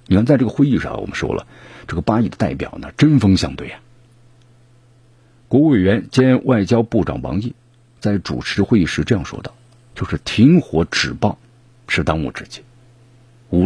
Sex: male